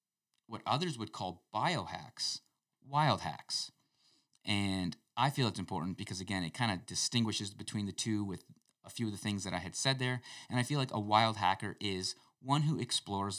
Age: 30-49